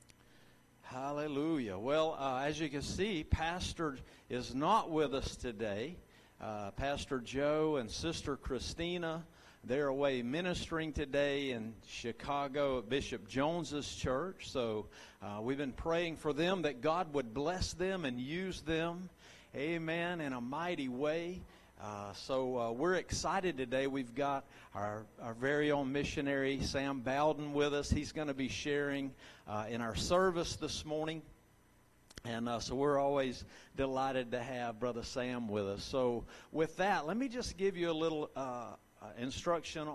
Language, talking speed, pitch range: English, 150 wpm, 125-155 Hz